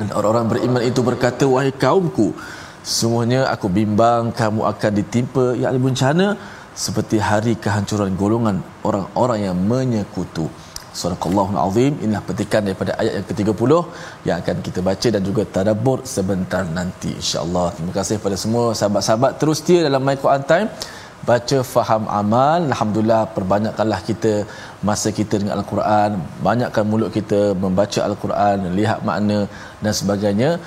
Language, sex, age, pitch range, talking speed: Malayalam, male, 20-39, 100-120 Hz, 135 wpm